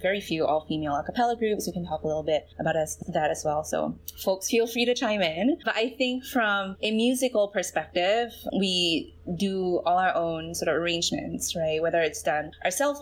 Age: 20-39